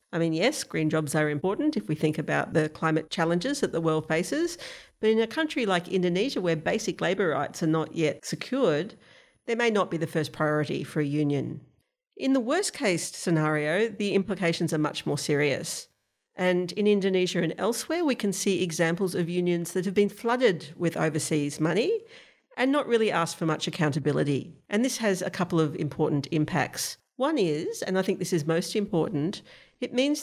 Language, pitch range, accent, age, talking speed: English, 155-210 Hz, Australian, 50-69, 195 wpm